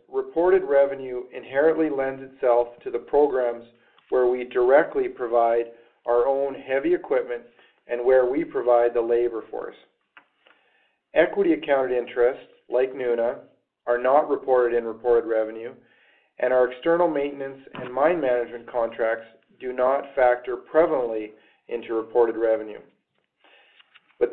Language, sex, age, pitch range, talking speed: English, male, 40-59, 120-180 Hz, 125 wpm